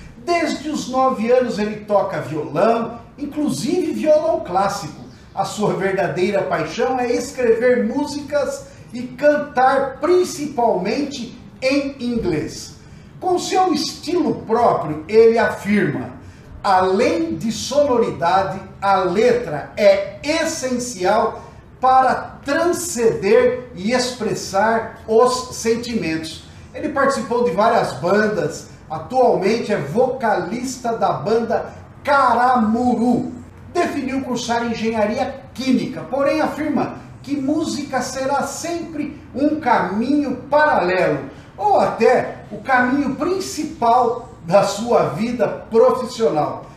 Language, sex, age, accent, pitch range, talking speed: Portuguese, male, 50-69, Brazilian, 210-280 Hz, 95 wpm